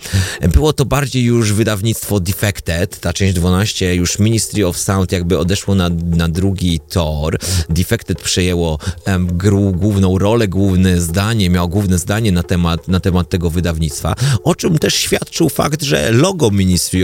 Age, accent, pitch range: 30-49, native, 85-100 Hz